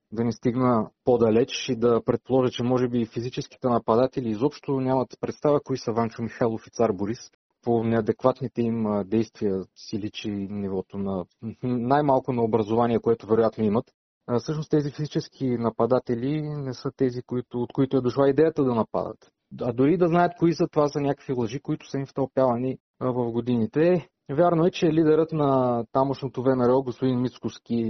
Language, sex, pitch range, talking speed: Bulgarian, male, 120-150 Hz, 160 wpm